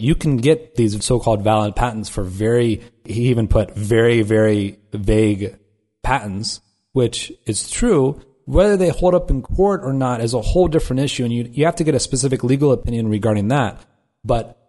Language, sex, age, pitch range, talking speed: English, male, 30-49, 105-135 Hz, 185 wpm